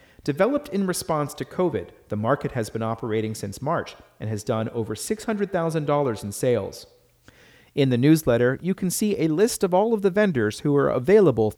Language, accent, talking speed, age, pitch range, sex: English, American, 180 wpm, 40-59, 110-160 Hz, male